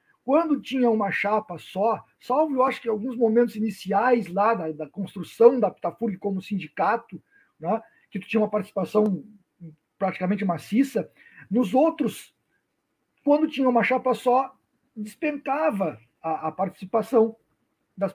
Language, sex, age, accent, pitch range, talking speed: Portuguese, male, 50-69, Brazilian, 190-245 Hz, 135 wpm